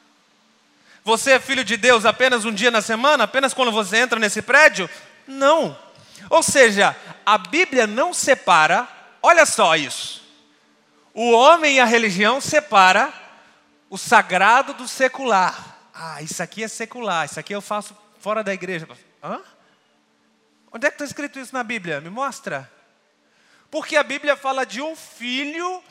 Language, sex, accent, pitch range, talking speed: Portuguese, male, Brazilian, 220-290 Hz, 155 wpm